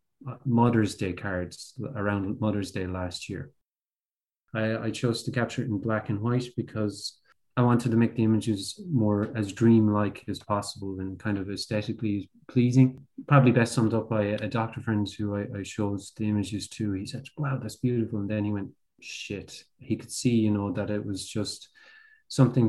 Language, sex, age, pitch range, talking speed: English, male, 30-49, 100-115 Hz, 185 wpm